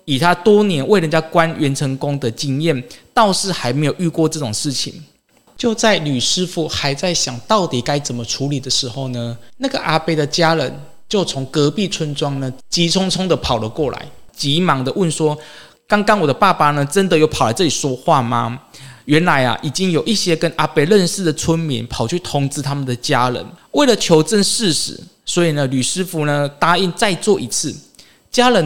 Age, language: 20-39, Chinese